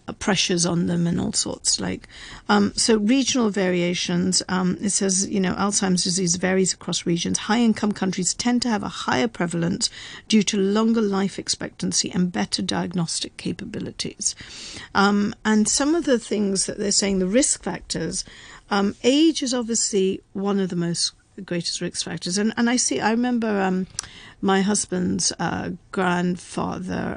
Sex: female